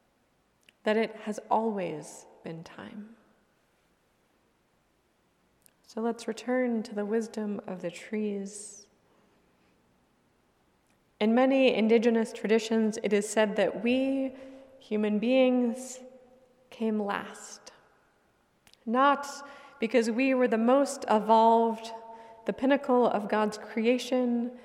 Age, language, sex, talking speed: 20-39, English, female, 95 wpm